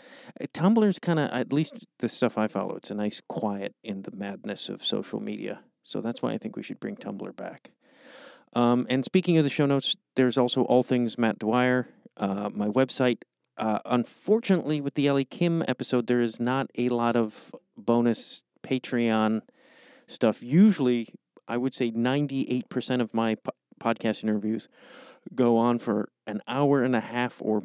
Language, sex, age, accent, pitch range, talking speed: English, male, 40-59, American, 115-140 Hz, 175 wpm